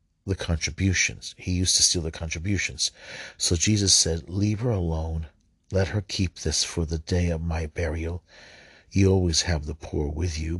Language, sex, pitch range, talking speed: English, male, 80-90 Hz, 175 wpm